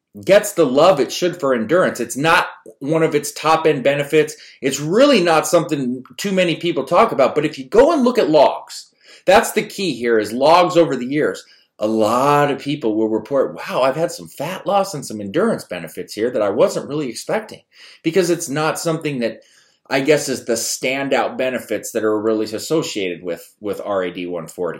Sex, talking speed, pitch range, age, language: male, 200 wpm, 110-155 Hz, 30-49, English